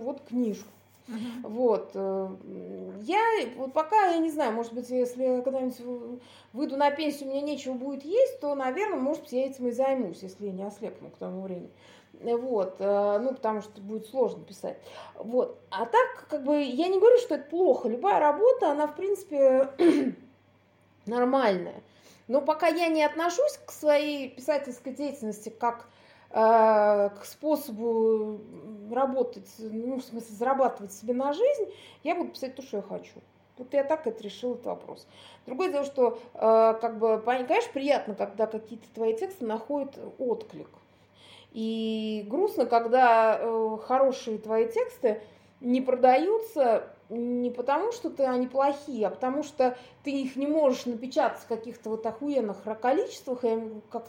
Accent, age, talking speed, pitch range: native, 30-49, 150 wpm, 225-295 Hz